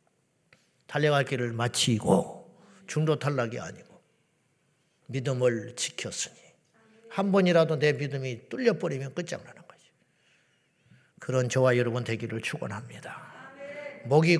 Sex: male